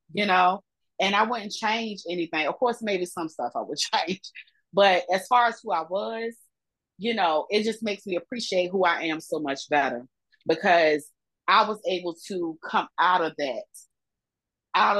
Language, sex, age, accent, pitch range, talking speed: English, female, 30-49, American, 155-200 Hz, 180 wpm